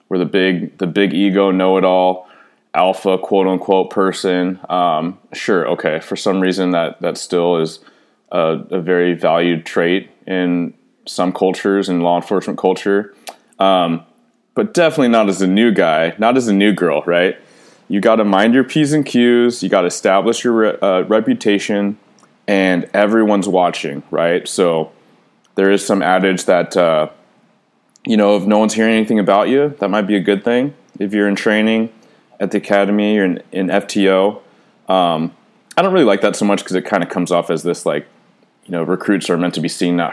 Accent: American